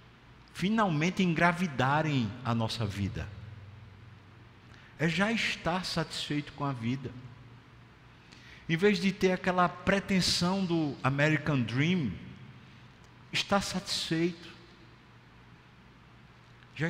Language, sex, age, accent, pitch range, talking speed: Portuguese, male, 50-69, Brazilian, 120-170 Hz, 85 wpm